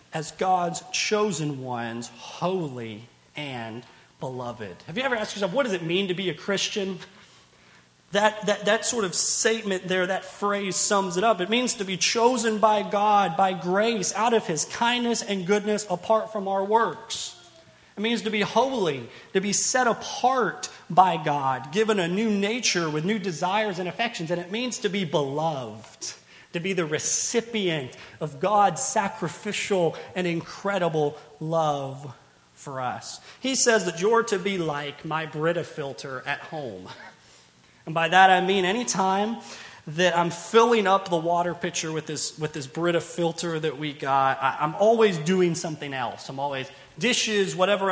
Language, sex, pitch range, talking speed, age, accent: English, male, 155-210 Hz, 170 wpm, 30-49, American